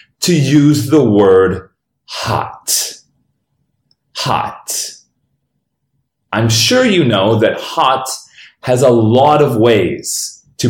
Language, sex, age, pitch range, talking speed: English, male, 30-49, 105-155 Hz, 100 wpm